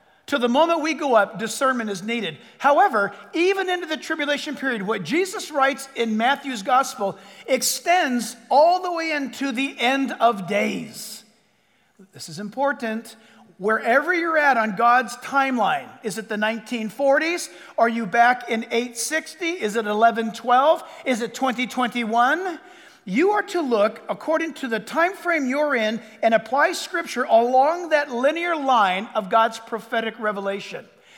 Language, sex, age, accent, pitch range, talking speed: English, male, 50-69, American, 225-320 Hz, 145 wpm